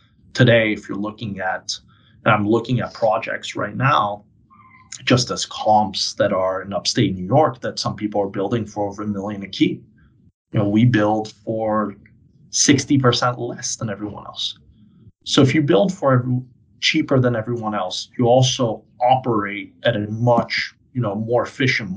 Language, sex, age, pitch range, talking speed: English, male, 30-49, 105-120 Hz, 165 wpm